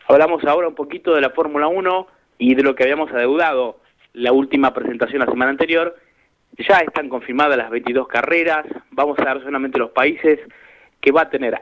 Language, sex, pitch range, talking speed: Spanish, male, 130-165 Hz, 185 wpm